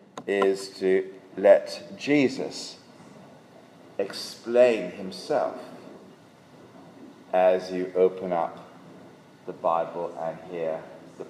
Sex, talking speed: male, 80 wpm